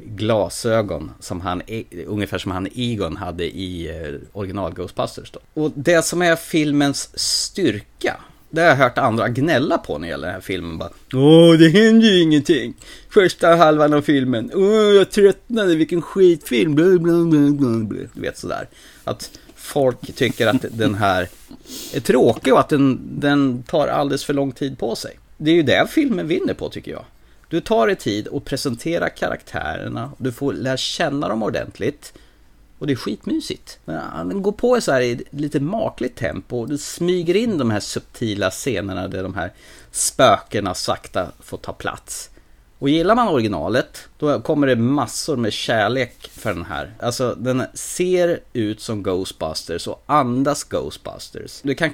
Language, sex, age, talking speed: Swedish, male, 30-49, 170 wpm